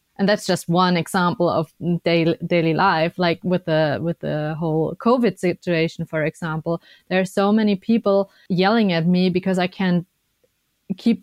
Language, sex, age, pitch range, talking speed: English, female, 30-49, 175-220 Hz, 165 wpm